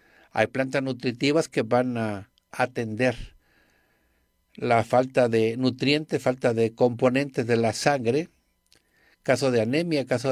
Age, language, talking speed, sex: 50-69, Spanish, 120 wpm, male